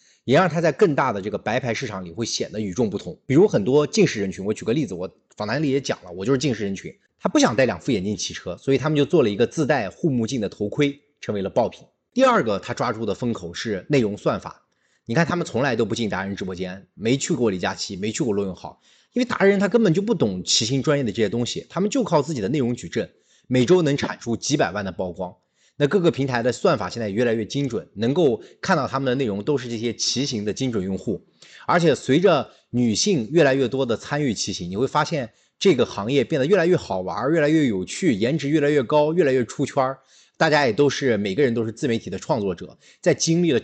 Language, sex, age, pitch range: Chinese, male, 30-49, 105-150 Hz